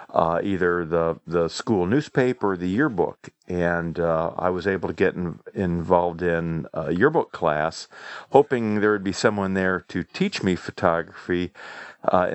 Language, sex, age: English, male, 50-69